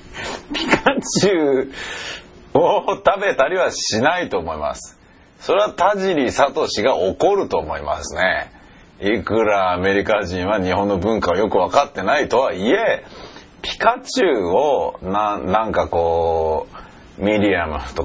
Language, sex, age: Japanese, male, 40-59